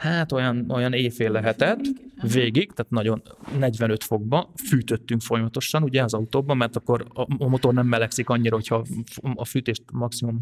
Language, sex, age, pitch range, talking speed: Hungarian, male, 30-49, 115-145 Hz, 150 wpm